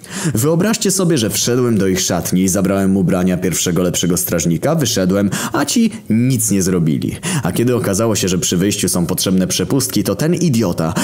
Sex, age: male, 20-39